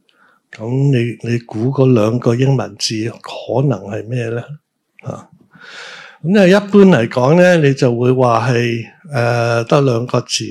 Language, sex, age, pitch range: Chinese, male, 60-79, 120-140 Hz